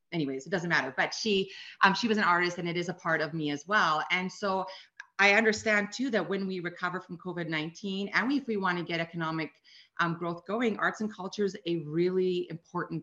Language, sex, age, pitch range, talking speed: English, female, 30-49, 165-205 Hz, 220 wpm